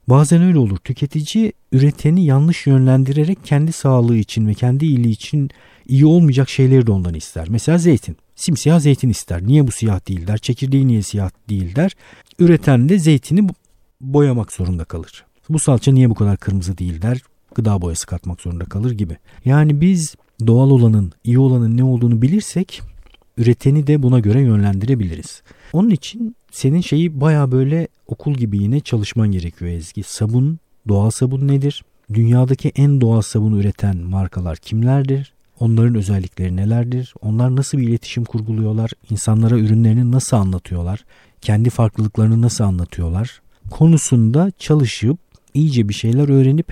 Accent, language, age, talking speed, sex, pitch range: native, Turkish, 50-69, 145 wpm, male, 100-140 Hz